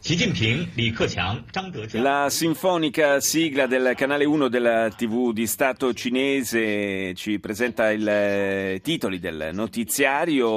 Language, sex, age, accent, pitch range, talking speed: Italian, male, 30-49, native, 105-130 Hz, 95 wpm